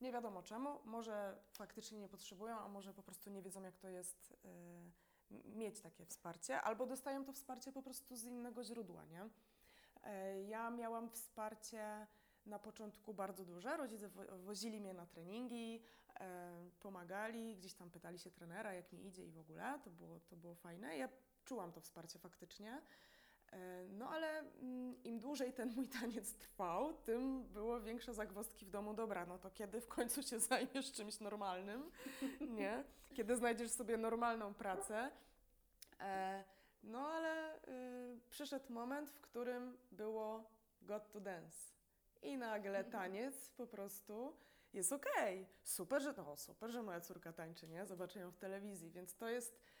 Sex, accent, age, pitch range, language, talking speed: female, native, 20-39, 195-245 Hz, Polish, 150 wpm